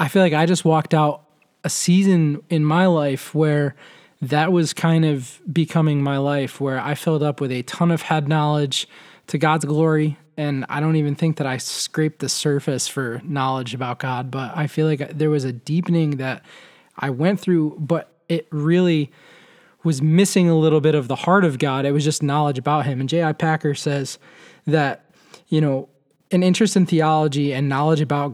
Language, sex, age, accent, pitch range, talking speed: English, male, 20-39, American, 145-170 Hz, 195 wpm